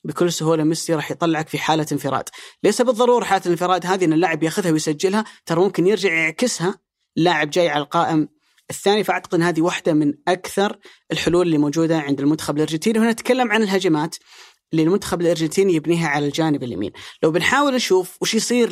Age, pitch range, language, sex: 30-49, 155-195 Hz, Arabic, female